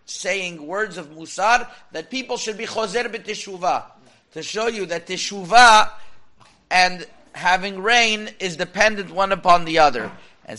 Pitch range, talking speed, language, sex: 175-220 Hz, 140 wpm, English, male